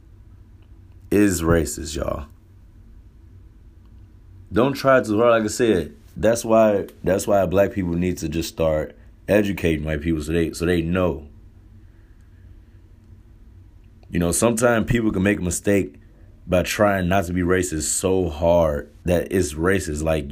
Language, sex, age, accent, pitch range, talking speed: English, male, 30-49, American, 85-100 Hz, 140 wpm